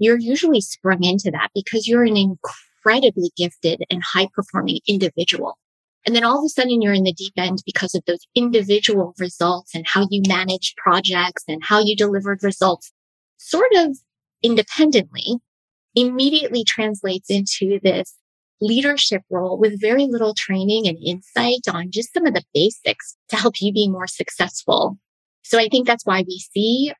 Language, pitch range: English, 190-230 Hz